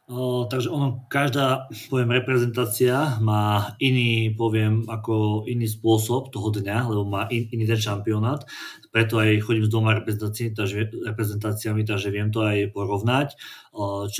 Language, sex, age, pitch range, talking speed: Slovak, male, 30-49, 105-115 Hz, 145 wpm